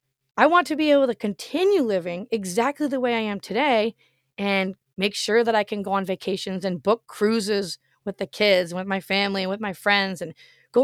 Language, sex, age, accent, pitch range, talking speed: English, female, 20-39, American, 185-240 Hz, 210 wpm